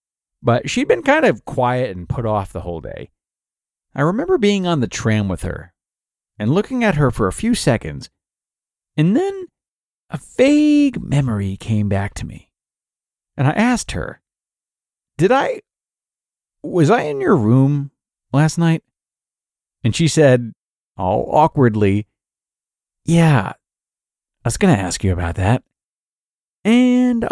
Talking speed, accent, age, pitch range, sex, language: 145 wpm, American, 40-59, 100-145 Hz, male, English